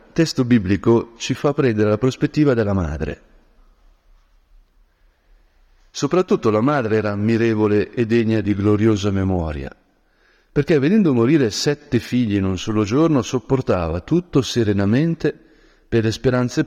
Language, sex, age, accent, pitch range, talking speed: Italian, male, 50-69, native, 95-115 Hz, 120 wpm